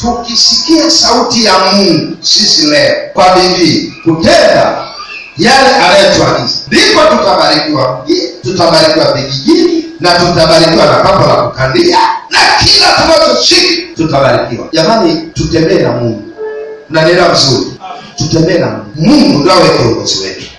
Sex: male